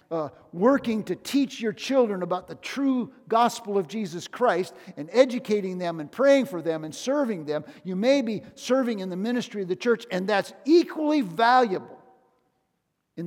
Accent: American